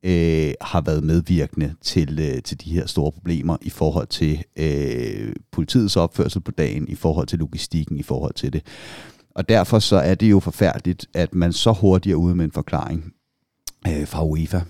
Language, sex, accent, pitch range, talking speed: Danish, male, native, 80-100 Hz, 170 wpm